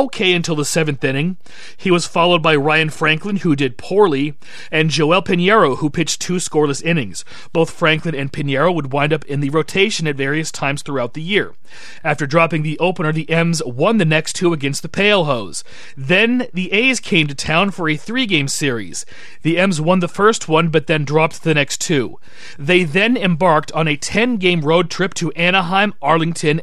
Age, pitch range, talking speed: 30-49, 150-190 Hz, 190 wpm